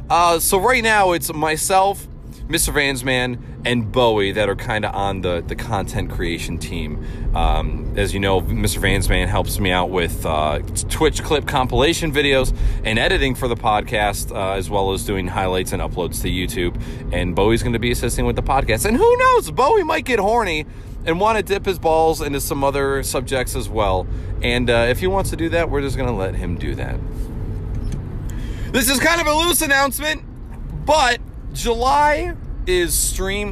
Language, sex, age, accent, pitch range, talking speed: English, male, 30-49, American, 105-175 Hz, 190 wpm